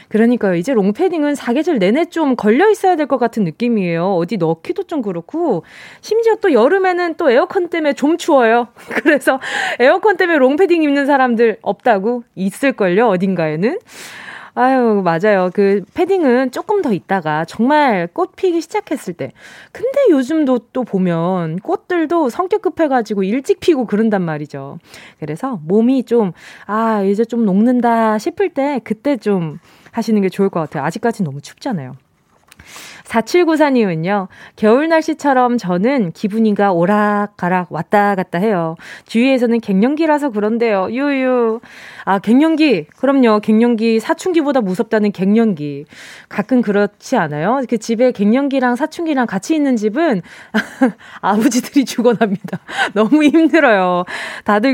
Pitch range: 200-295 Hz